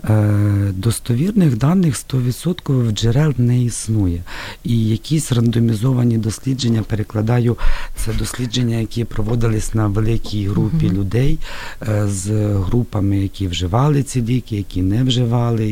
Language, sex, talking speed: Ukrainian, male, 110 wpm